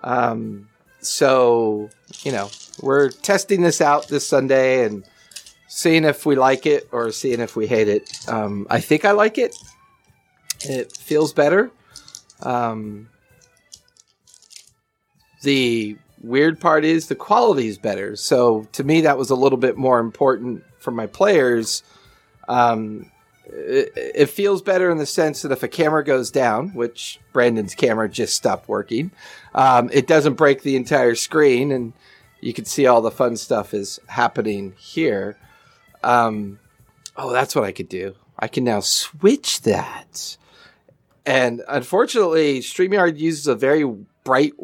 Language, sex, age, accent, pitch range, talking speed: English, male, 40-59, American, 115-160 Hz, 145 wpm